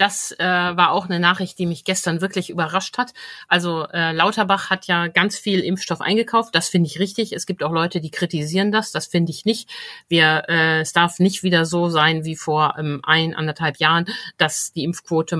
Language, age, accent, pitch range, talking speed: German, 50-69, German, 155-185 Hz, 205 wpm